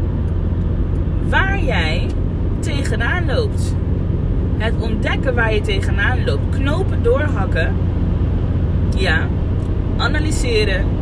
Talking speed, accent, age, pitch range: 75 wpm, Dutch, 20-39, 85-95 Hz